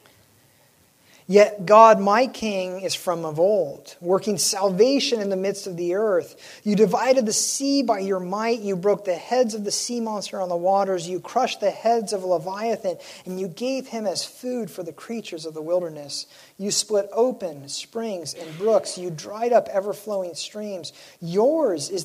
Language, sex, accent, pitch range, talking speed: English, male, American, 155-220 Hz, 180 wpm